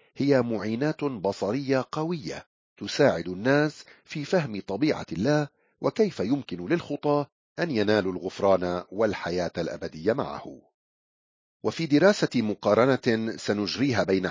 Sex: male